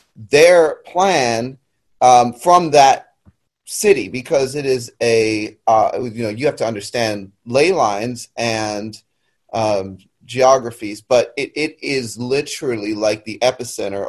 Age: 30-49